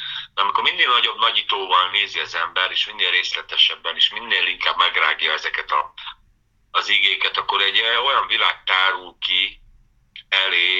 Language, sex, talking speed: Hungarian, male, 145 wpm